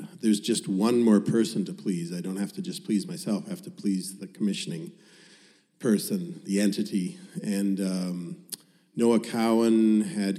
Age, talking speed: 40-59, 160 wpm